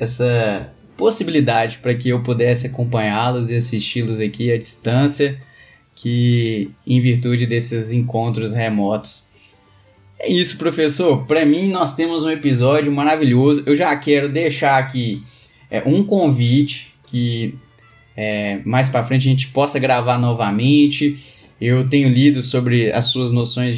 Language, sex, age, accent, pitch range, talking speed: Portuguese, male, 20-39, Brazilian, 115-140 Hz, 135 wpm